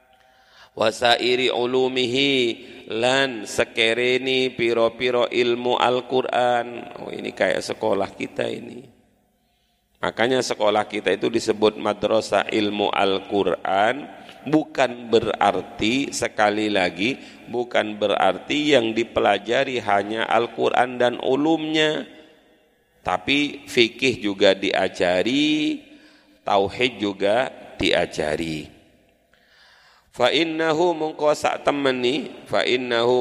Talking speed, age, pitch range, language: 85 wpm, 40-59, 115-135 Hz, Indonesian